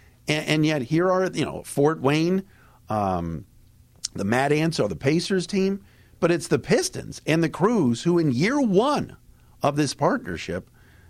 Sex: male